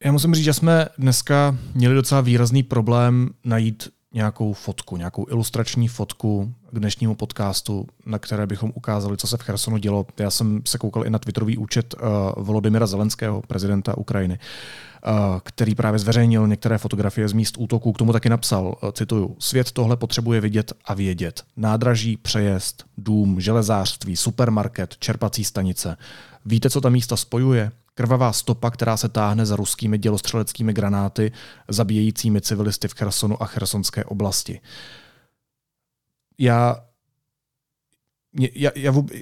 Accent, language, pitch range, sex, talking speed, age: native, Czech, 105-125 Hz, male, 140 wpm, 30-49